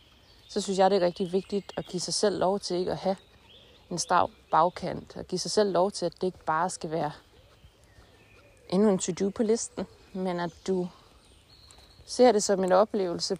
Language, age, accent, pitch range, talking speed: Danish, 20-39, native, 170-205 Hz, 195 wpm